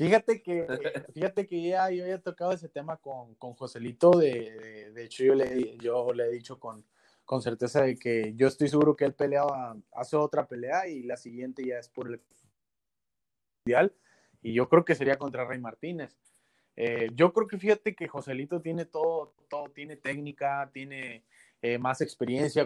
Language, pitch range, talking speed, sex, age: Spanish, 125-150 Hz, 185 wpm, male, 20-39